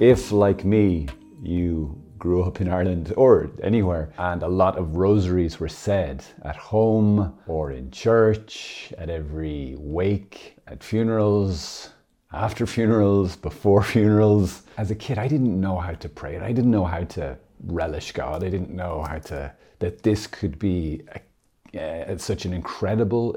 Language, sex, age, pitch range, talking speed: English, male, 30-49, 85-110 Hz, 155 wpm